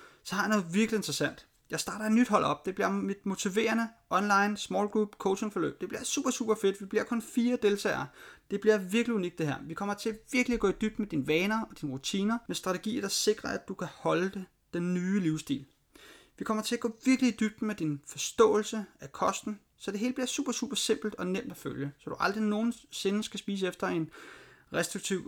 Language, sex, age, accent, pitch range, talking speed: Danish, male, 30-49, native, 165-220 Hz, 230 wpm